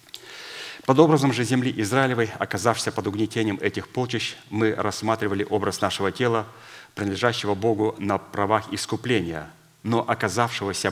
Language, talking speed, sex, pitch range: Russian, 120 wpm, male, 95-115 Hz